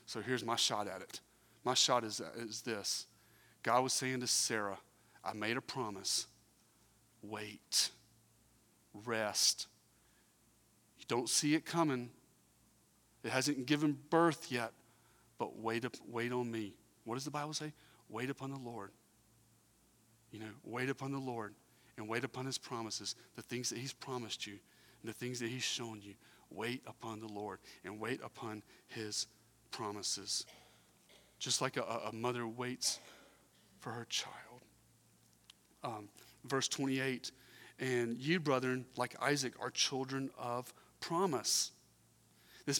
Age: 30-49